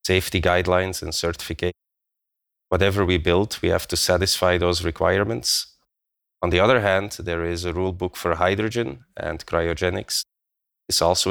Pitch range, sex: 85-95 Hz, male